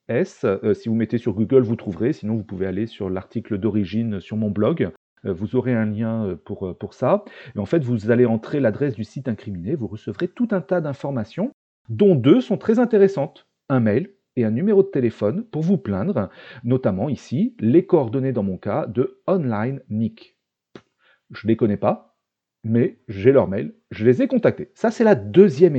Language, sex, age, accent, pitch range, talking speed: French, male, 40-59, French, 110-165 Hz, 195 wpm